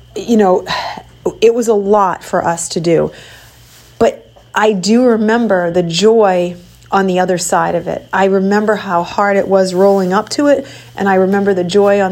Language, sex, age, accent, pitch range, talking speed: English, female, 40-59, American, 185-220 Hz, 190 wpm